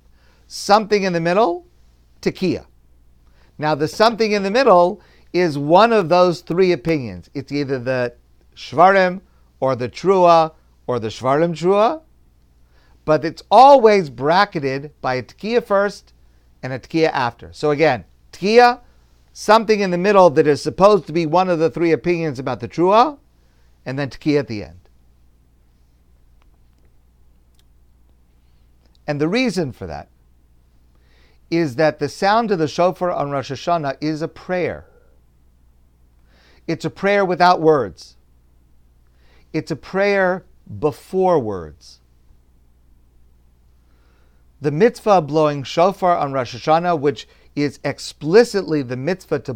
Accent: American